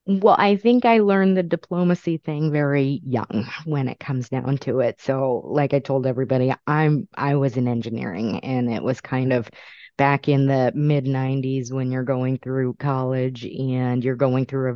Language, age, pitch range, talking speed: English, 30-49, 125-145 Hz, 185 wpm